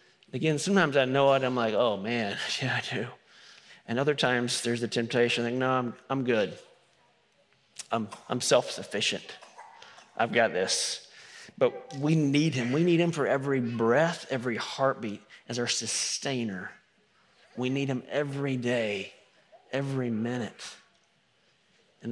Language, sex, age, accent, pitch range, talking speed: English, male, 30-49, American, 130-195 Hz, 140 wpm